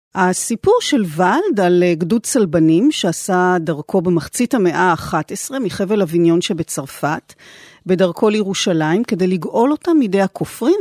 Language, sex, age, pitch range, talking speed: Hebrew, female, 40-59, 170-270 Hz, 115 wpm